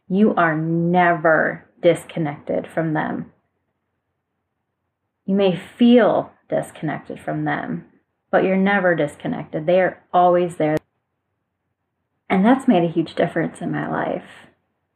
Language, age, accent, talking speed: English, 20-39, American, 115 wpm